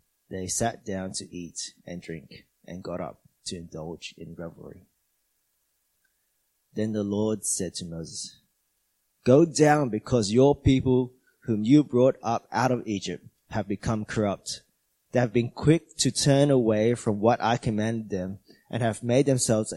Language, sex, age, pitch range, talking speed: English, male, 20-39, 105-135 Hz, 155 wpm